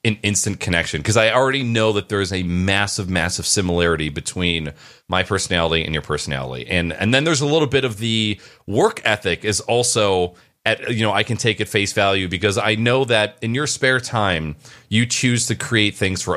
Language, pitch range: English, 95-130 Hz